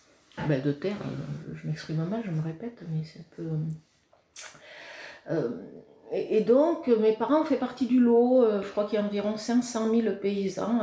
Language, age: French, 40-59